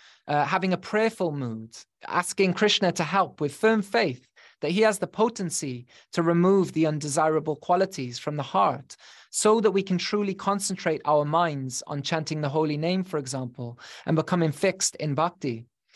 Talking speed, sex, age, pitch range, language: 170 wpm, male, 20-39, 135-180 Hz, English